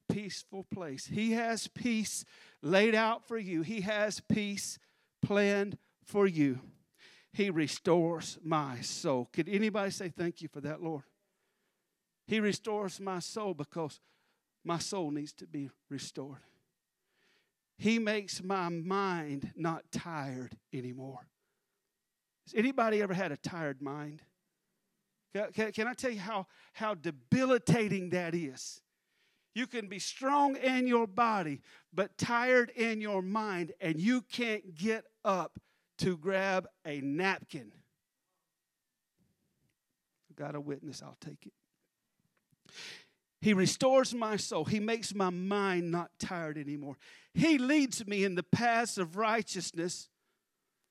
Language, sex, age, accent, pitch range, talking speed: English, male, 50-69, American, 160-215 Hz, 125 wpm